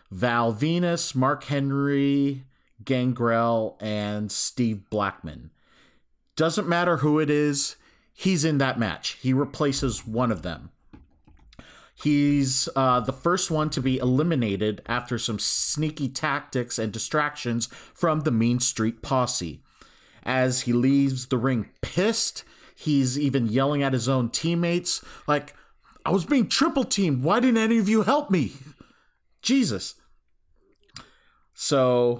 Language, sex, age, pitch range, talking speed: English, male, 40-59, 120-170 Hz, 130 wpm